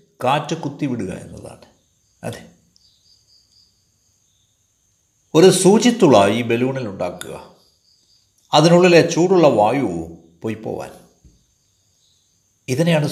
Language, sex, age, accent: Malayalam, male, 60-79, native